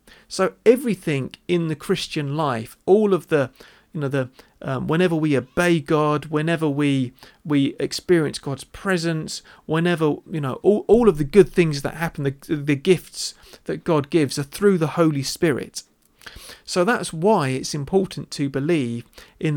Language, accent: English, British